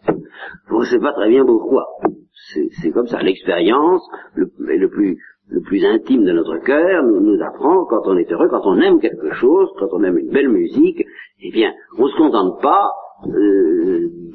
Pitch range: 335-380 Hz